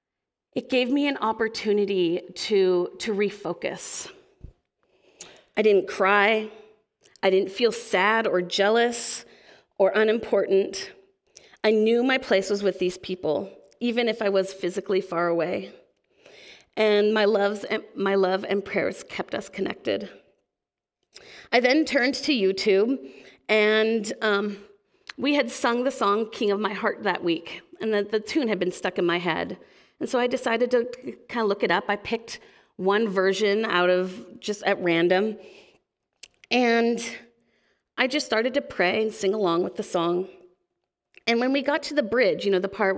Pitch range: 190-245 Hz